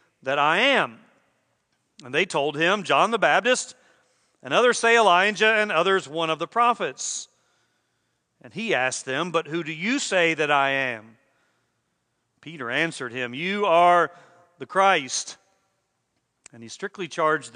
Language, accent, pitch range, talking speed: English, American, 140-215 Hz, 145 wpm